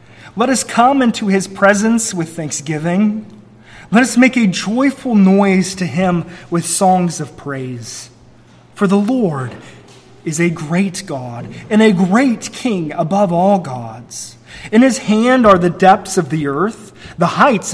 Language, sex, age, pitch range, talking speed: English, male, 30-49, 160-225 Hz, 150 wpm